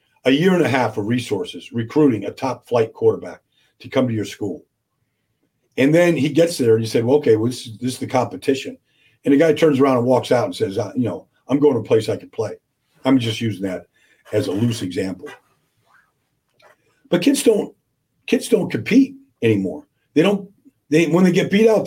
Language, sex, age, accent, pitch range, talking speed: English, male, 50-69, American, 125-175 Hz, 215 wpm